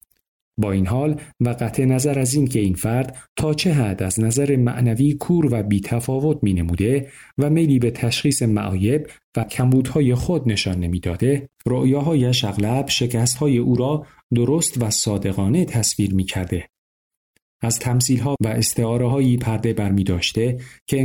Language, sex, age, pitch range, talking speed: Persian, male, 40-59, 105-135 Hz, 150 wpm